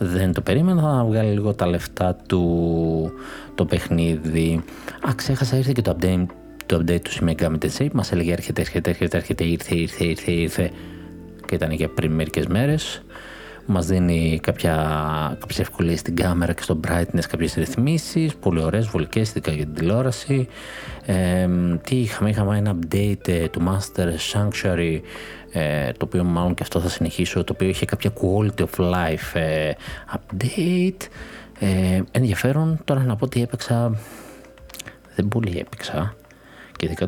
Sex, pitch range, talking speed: male, 85-105 Hz, 145 wpm